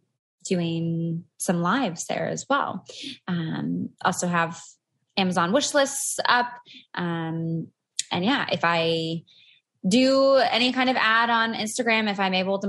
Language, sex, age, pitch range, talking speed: English, female, 20-39, 170-230 Hz, 135 wpm